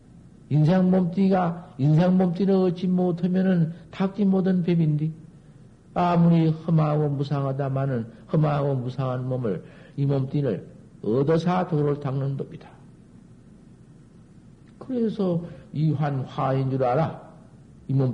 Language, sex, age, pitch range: Korean, male, 60-79, 130-175 Hz